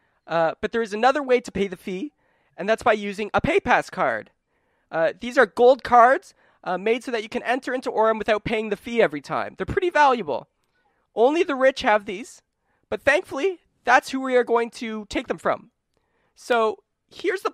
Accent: American